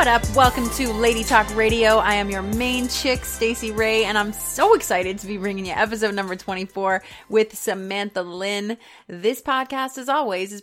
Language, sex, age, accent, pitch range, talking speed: English, female, 30-49, American, 185-240 Hz, 185 wpm